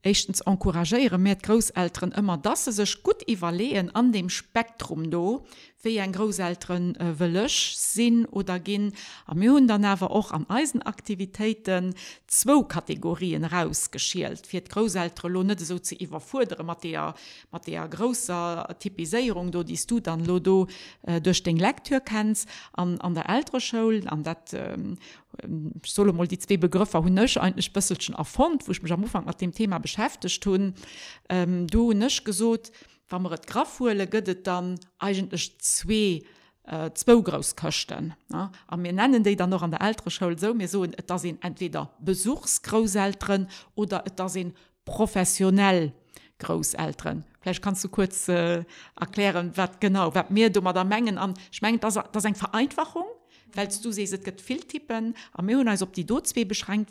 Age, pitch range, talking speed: 50-69, 180-220 Hz, 135 wpm